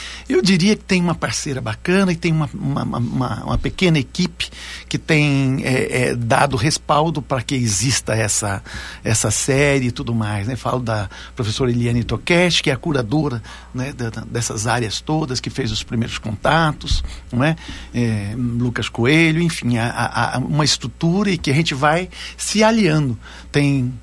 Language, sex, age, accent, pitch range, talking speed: Portuguese, male, 60-79, Brazilian, 120-155 Hz, 170 wpm